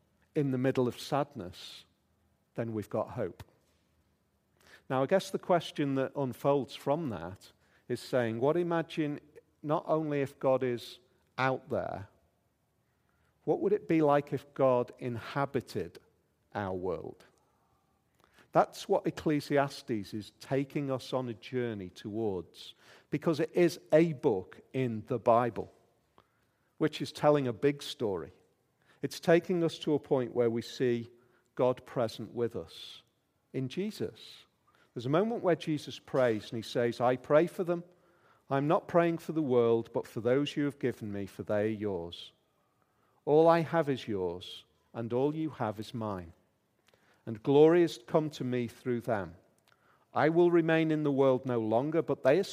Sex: male